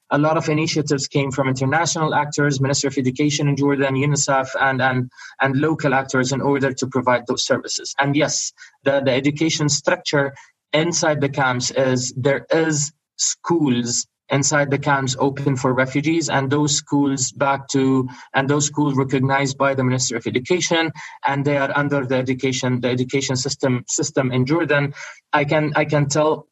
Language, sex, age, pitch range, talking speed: English, male, 20-39, 130-150 Hz, 170 wpm